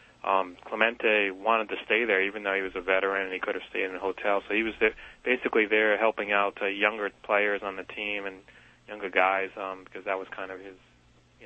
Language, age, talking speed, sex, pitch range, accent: English, 30-49, 235 wpm, male, 95-105 Hz, American